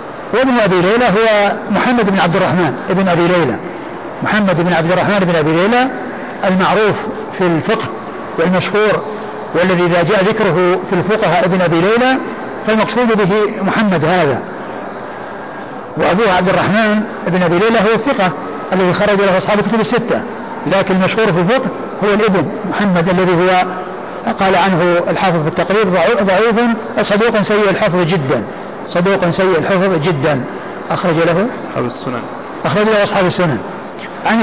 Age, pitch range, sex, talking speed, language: 60-79, 180-210 Hz, male, 140 wpm, Arabic